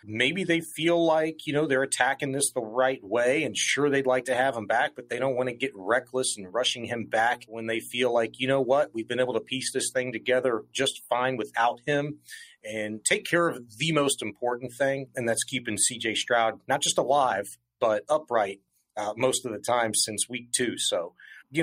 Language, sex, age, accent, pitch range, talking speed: English, male, 30-49, American, 115-155 Hz, 215 wpm